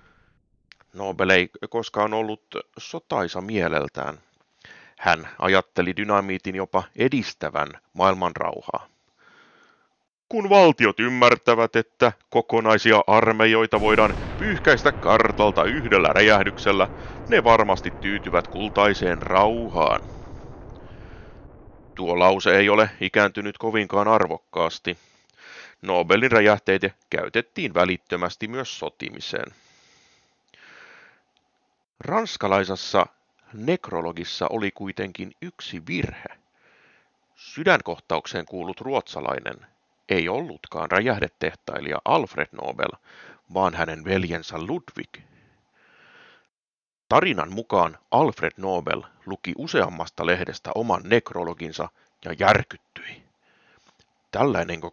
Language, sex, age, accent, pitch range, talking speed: Finnish, male, 30-49, native, 90-115 Hz, 80 wpm